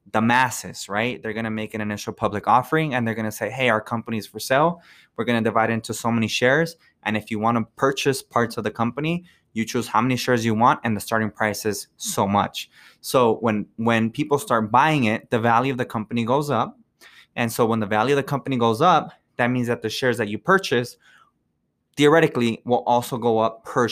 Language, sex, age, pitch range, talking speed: English, male, 20-39, 110-130 Hz, 230 wpm